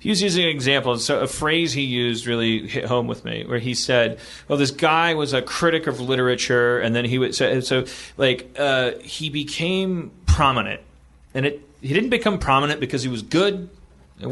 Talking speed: 205 wpm